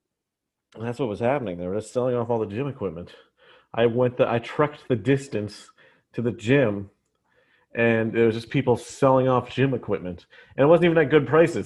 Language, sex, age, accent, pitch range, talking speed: English, male, 30-49, American, 120-155 Hz, 195 wpm